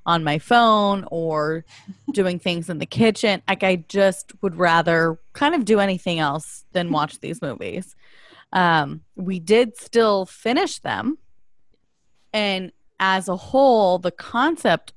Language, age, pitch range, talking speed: English, 20-39, 170-210 Hz, 140 wpm